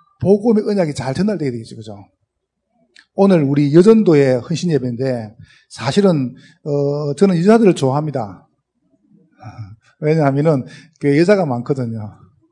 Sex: male